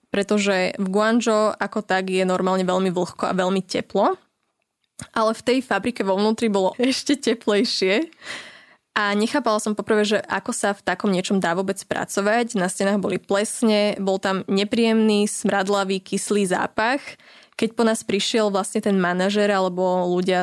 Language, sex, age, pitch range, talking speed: Slovak, female, 20-39, 190-220 Hz, 155 wpm